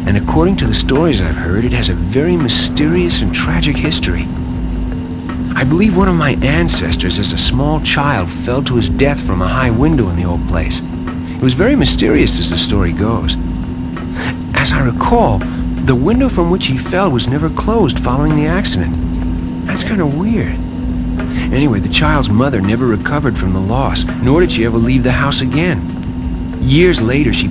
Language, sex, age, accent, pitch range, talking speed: English, male, 50-69, American, 85-125 Hz, 180 wpm